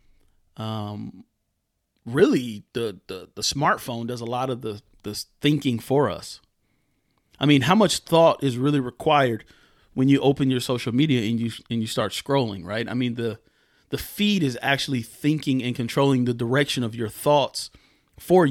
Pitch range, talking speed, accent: 120-150 Hz, 170 wpm, American